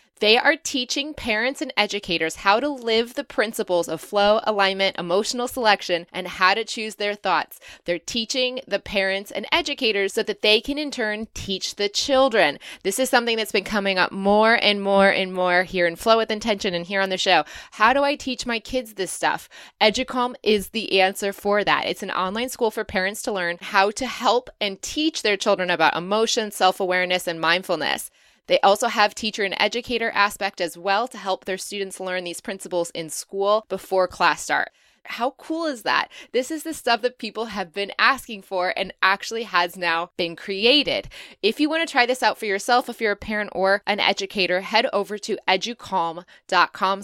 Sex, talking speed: female, 195 wpm